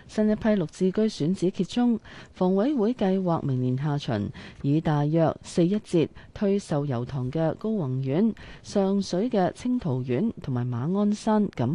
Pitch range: 140-195 Hz